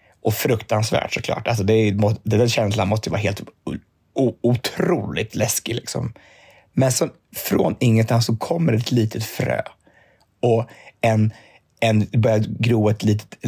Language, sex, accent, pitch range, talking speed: Swedish, male, native, 105-125 Hz, 140 wpm